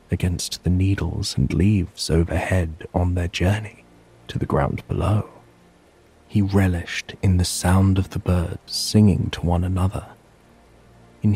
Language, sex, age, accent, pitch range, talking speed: English, male, 30-49, British, 90-105 Hz, 135 wpm